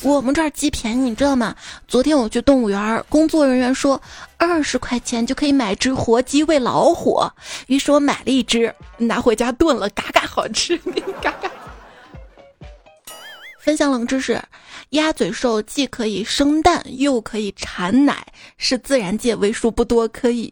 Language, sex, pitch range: Chinese, female, 230-285 Hz